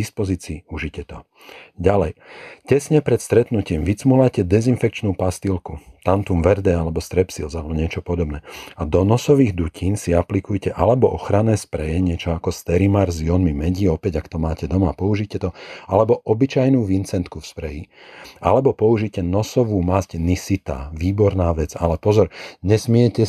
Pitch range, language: 85-105 Hz, Slovak